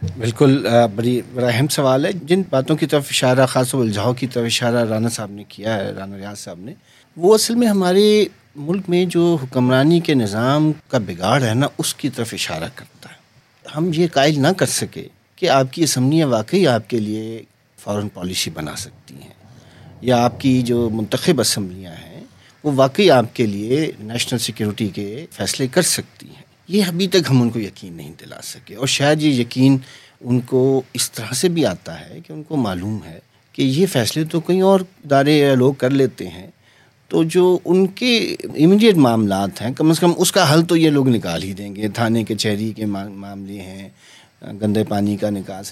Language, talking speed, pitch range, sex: Urdu, 200 wpm, 110-155 Hz, male